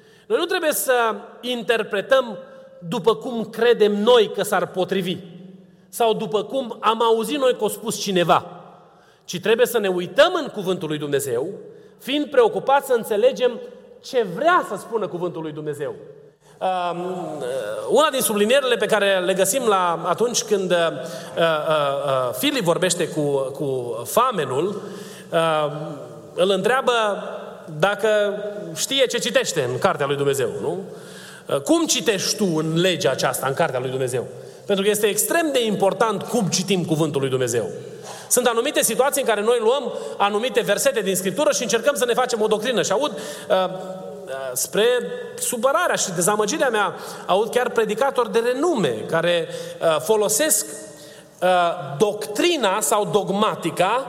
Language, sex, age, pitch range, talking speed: Romanian, male, 30-49, 180-260 Hz, 145 wpm